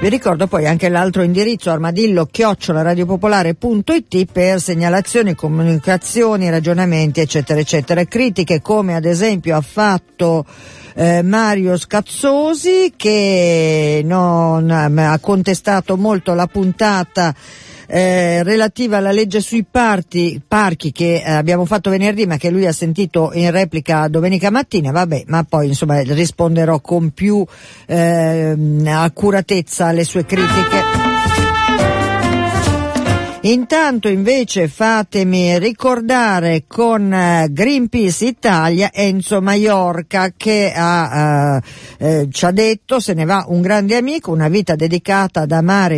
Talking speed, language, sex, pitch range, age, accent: 115 wpm, Italian, female, 155-200 Hz, 50-69, native